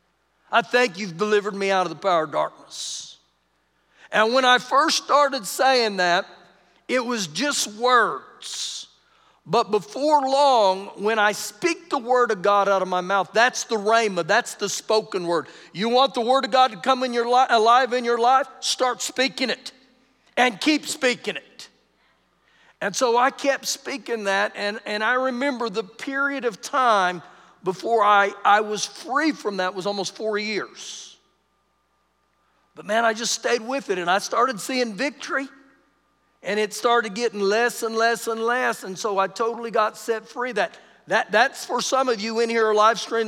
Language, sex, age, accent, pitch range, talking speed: English, male, 50-69, American, 200-250 Hz, 180 wpm